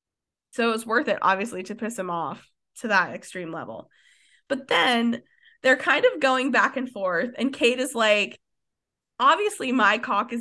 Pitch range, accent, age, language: 210-260 Hz, American, 20-39, English